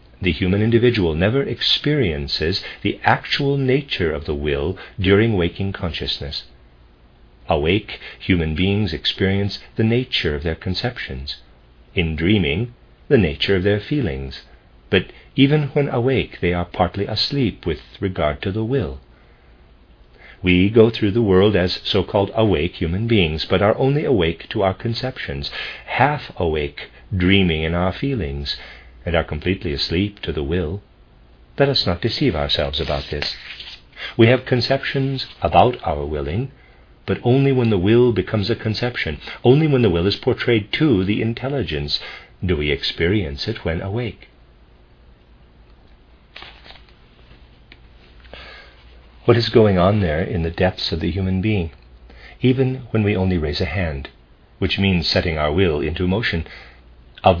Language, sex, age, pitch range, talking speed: English, male, 50-69, 70-110 Hz, 140 wpm